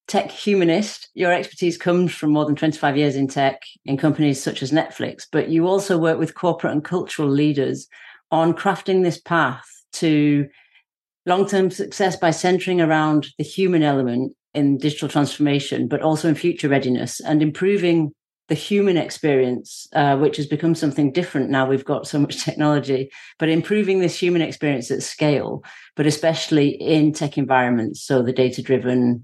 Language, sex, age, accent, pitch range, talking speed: English, female, 40-59, British, 135-165 Hz, 165 wpm